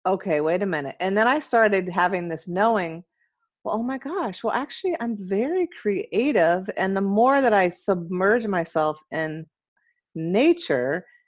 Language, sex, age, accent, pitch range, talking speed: English, female, 40-59, American, 165-230 Hz, 155 wpm